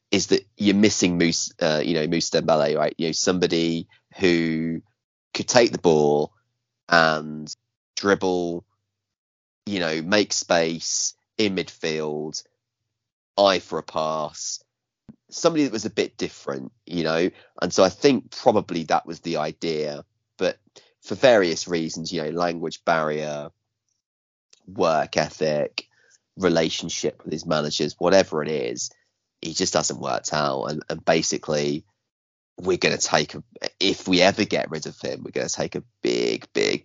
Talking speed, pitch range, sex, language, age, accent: 150 wpm, 75-100 Hz, male, English, 30-49, British